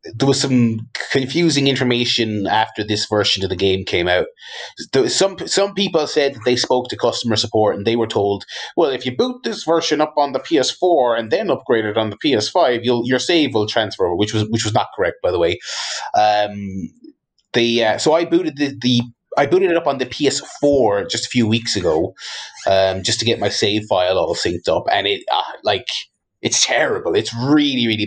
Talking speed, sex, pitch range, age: 205 wpm, male, 105-155 Hz, 30-49